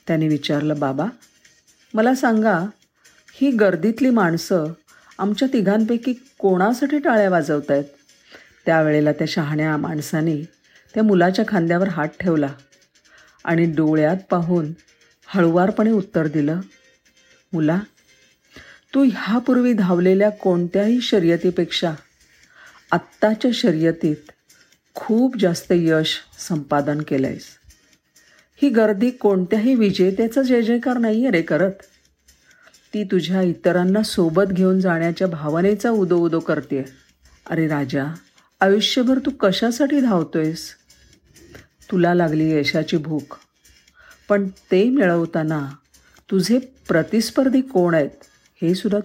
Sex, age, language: female, 50-69, Marathi